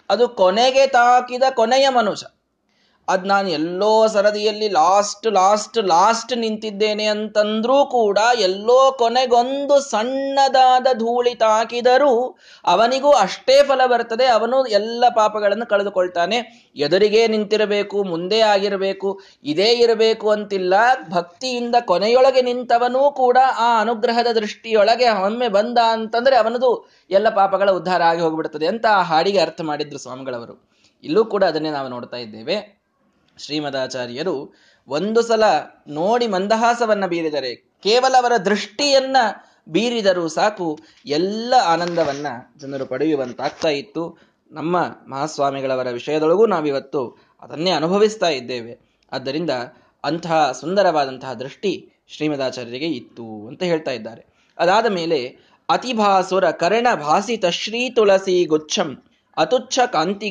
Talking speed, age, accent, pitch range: 100 wpm, 20-39, native, 170-240 Hz